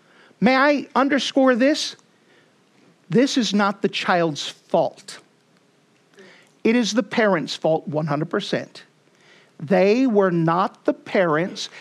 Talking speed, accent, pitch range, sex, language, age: 105 wpm, American, 175-230 Hz, male, English, 50-69